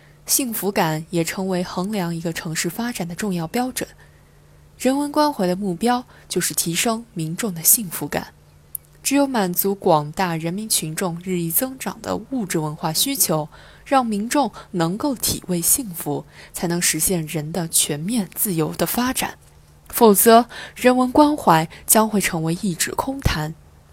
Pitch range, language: 160-230 Hz, Chinese